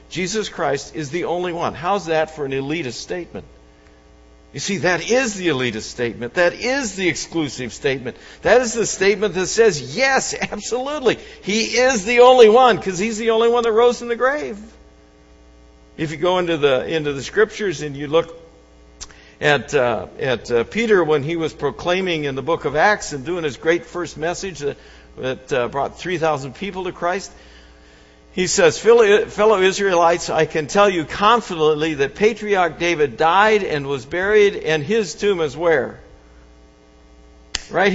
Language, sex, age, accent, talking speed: English, male, 60-79, American, 170 wpm